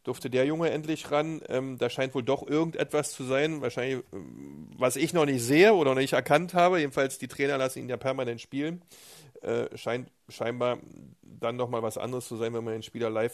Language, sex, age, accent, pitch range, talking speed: German, male, 40-59, German, 115-135 Hz, 210 wpm